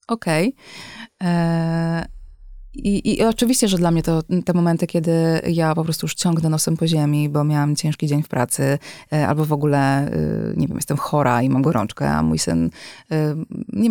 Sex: female